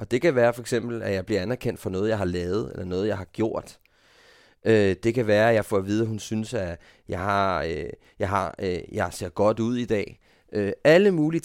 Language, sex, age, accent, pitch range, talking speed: Danish, male, 30-49, native, 105-125 Hz, 230 wpm